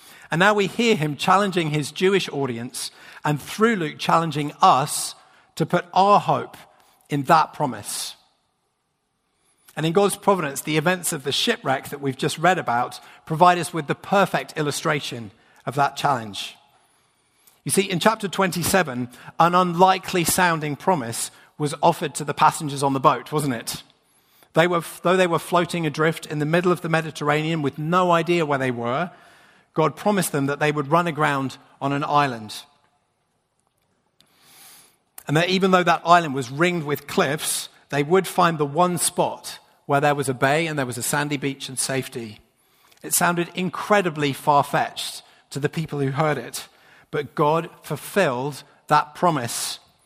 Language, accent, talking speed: English, British, 165 wpm